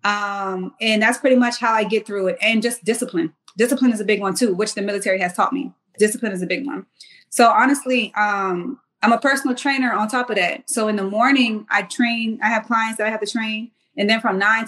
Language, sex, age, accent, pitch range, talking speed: English, female, 20-39, American, 195-235 Hz, 240 wpm